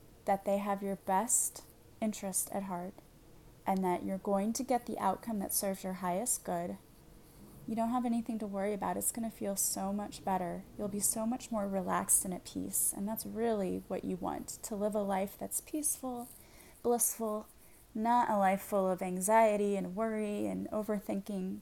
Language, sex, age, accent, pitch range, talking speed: English, female, 20-39, American, 190-225 Hz, 185 wpm